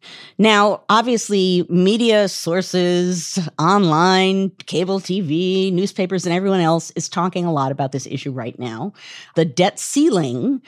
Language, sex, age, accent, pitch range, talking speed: English, female, 50-69, American, 155-195 Hz, 130 wpm